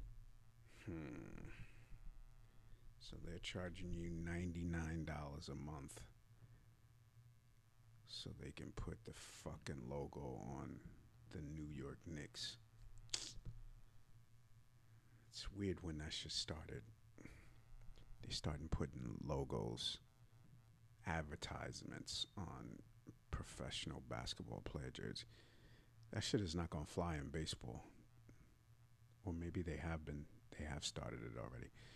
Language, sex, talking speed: English, male, 100 wpm